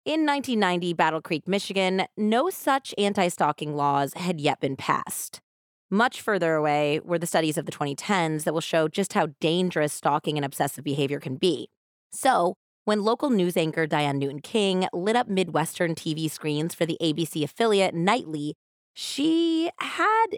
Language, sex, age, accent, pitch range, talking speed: English, female, 20-39, American, 150-205 Hz, 155 wpm